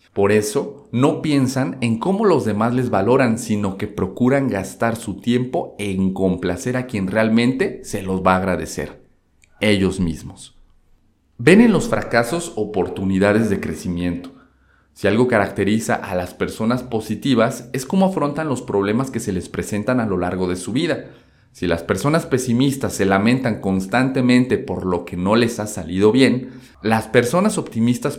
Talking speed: 160 wpm